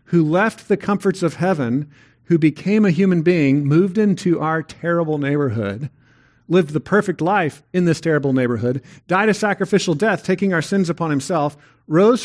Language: English